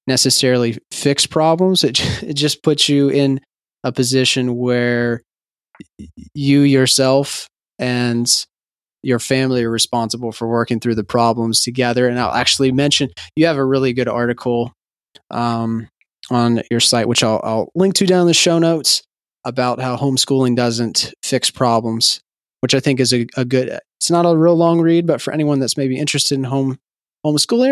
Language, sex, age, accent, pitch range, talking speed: English, male, 20-39, American, 120-145 Hz, 165 wpm